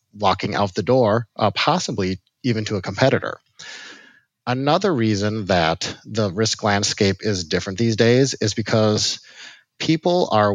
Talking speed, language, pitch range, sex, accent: 135 wpm, English, 95-120 Hz, male, American